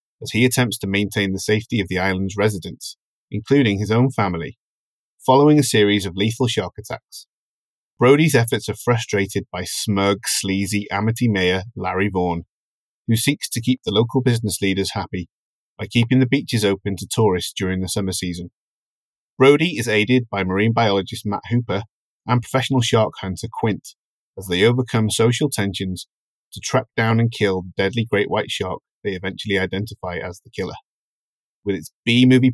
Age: 30-49